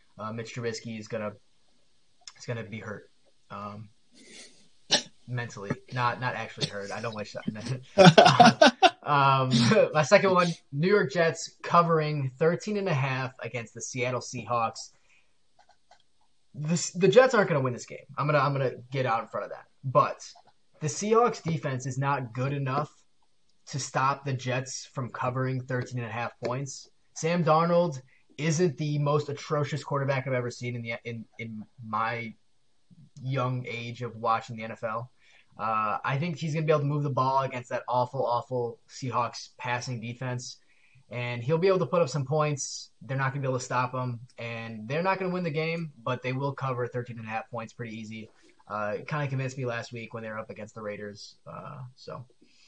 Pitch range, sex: 120-150 Hz, male